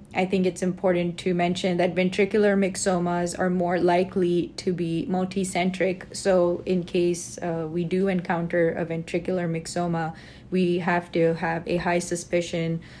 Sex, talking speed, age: female, 150 wpm, 20-39